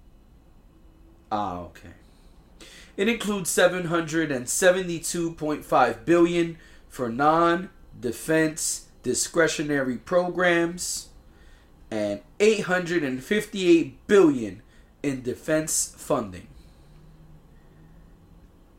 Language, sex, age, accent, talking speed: English, male, 30-49, American, 50 wpm